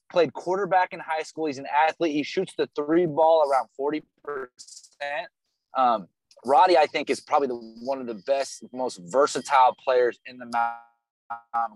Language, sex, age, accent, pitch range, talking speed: English, male, 20-39, American, 115-150 Hz, 165 wpm